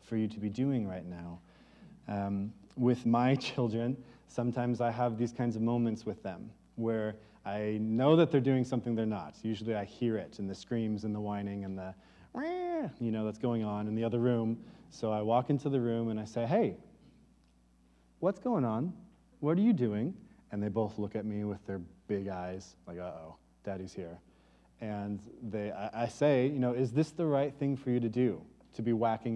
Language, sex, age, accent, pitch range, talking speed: English, male, 30-49, American, 105-135 Hz, 205 wpm